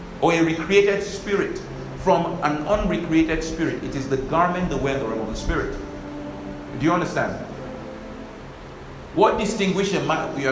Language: English